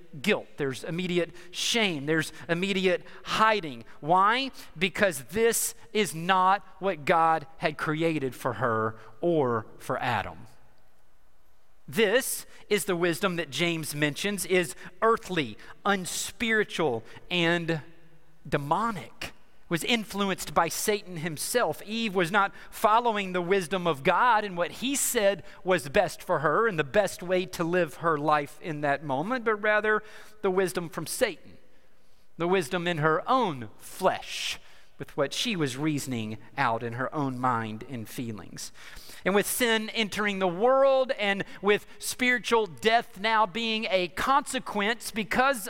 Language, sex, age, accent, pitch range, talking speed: English, male, 40-59, American, 160-220 Hz, 135 wpm